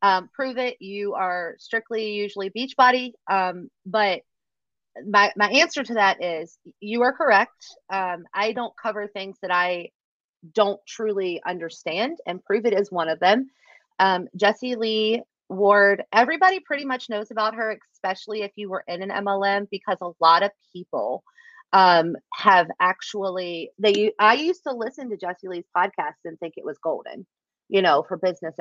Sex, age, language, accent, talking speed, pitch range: female, 30-49, English, American, 165 wpm, 190-230 Hz